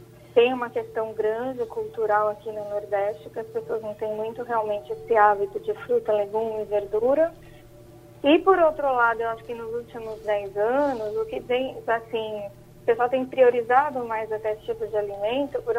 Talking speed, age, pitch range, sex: 180 wpm, 20-39, 215-280 Hz, female